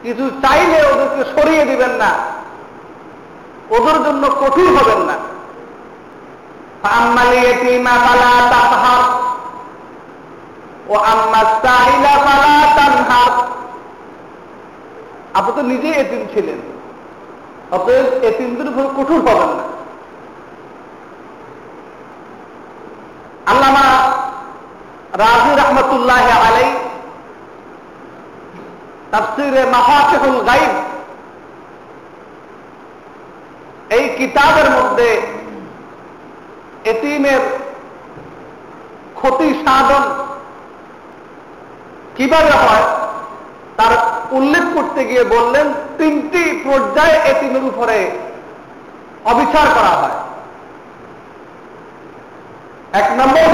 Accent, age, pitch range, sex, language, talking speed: native, 50-69, 245-320 Hz, male, Bengali, 35 wpm